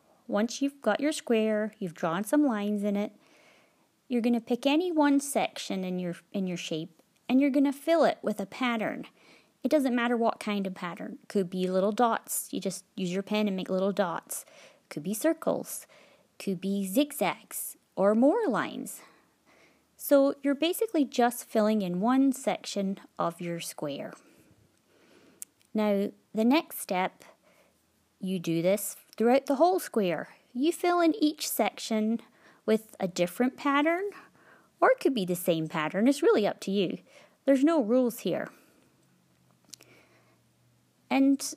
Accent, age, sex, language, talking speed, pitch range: American, 30-49, female, English, 160 wpm, 195-285 Hz